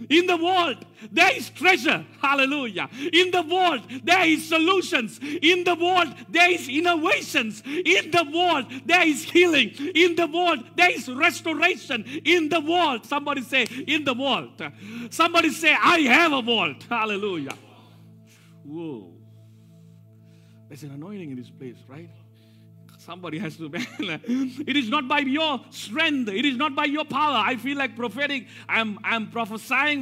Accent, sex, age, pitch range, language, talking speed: Indian, male, 50-69, 245-315 Hz, English, 150 wpm